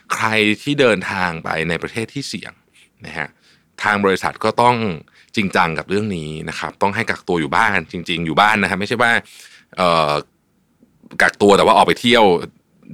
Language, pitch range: Thai, 80-105 Hz